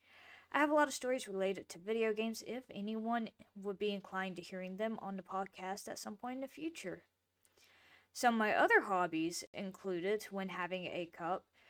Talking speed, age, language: 190 wpm, 20-39, English